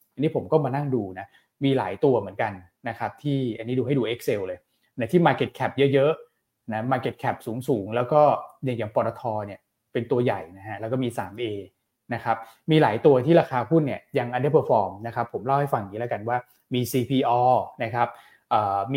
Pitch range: 115-145 Hz